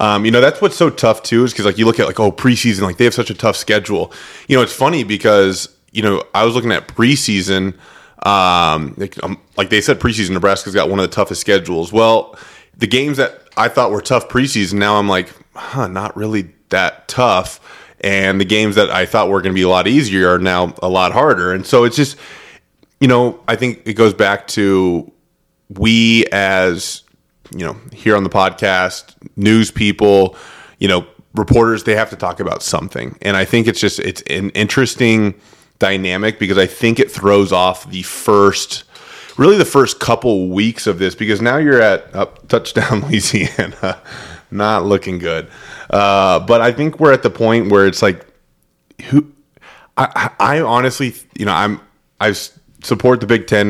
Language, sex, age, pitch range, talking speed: English, male, 30-49, 95-115 Hz, 190 wpm